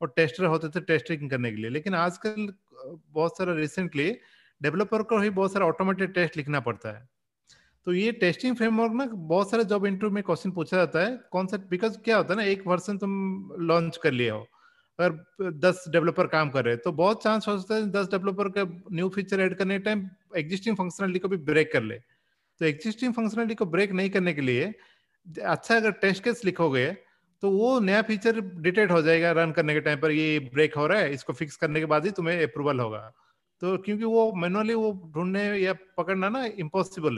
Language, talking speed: Hindi, 200 wpm